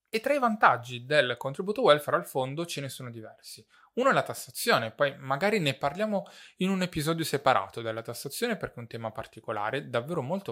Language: Italian